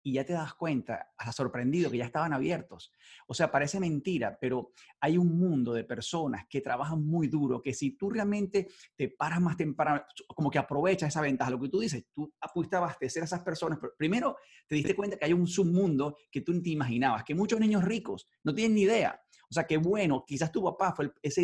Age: 30-49